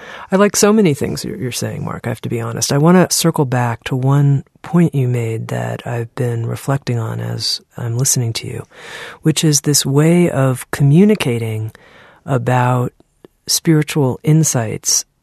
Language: English